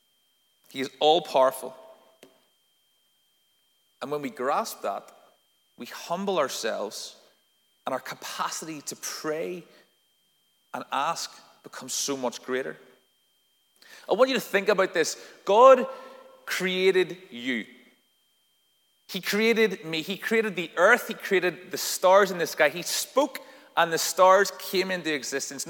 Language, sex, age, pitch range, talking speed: English, male, 30-49, 150-195 Hz, 130 wpm